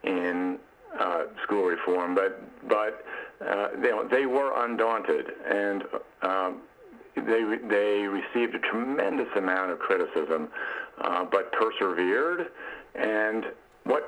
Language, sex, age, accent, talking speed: English, male, 50-69, American, 115 wpm